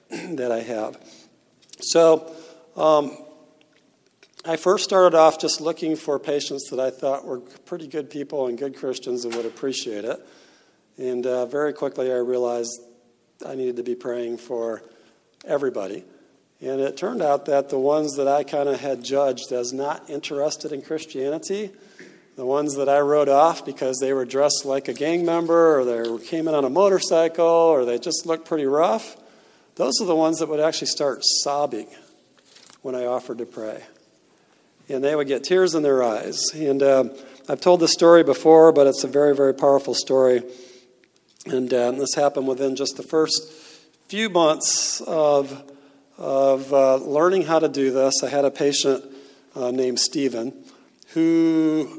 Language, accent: English, American